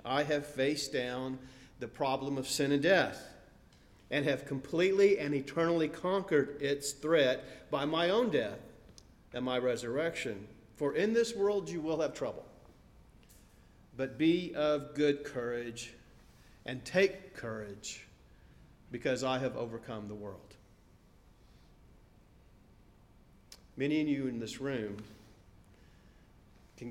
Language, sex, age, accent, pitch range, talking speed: English, male, 40-59, American, 120-160 Hz, 120 wpm